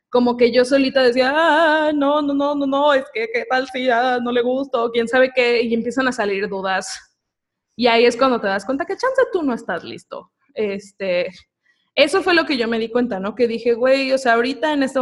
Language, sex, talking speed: Spanish, female, 240 wpm